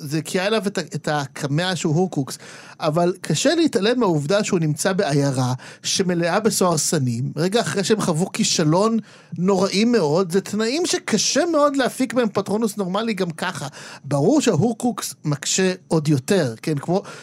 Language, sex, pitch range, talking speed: Hebrew, male, 145-205 Hz, 145 wpm